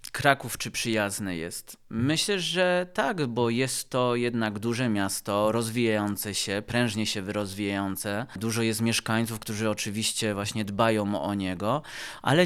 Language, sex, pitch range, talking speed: Polish, male, 105-120 Hz, 135 wpm